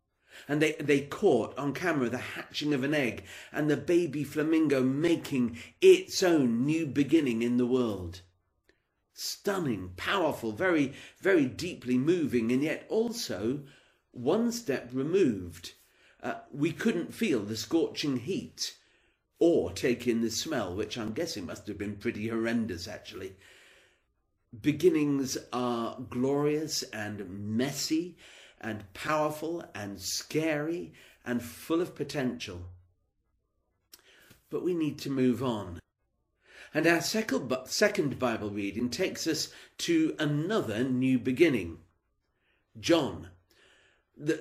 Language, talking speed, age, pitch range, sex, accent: English, 120 wpm, 50-69, 110-155 Hz, male, British